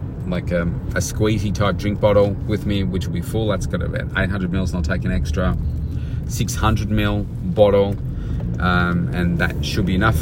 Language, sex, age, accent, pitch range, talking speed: English, male, 30-49, Australian, 85-105 Hz, 190 wpm